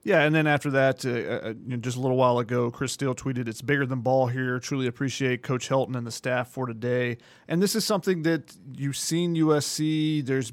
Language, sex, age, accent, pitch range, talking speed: English, male, 30-49, American, 135-160 Hz, 230 wpm